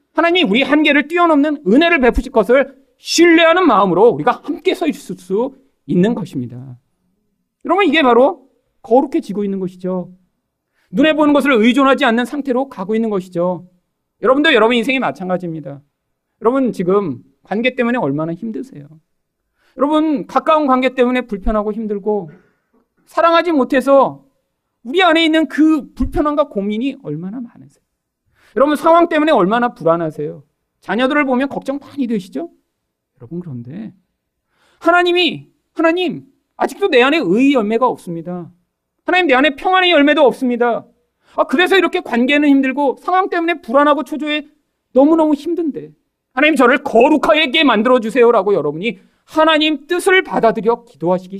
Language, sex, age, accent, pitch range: Korean, male, 40-59, native, 185-300 Hz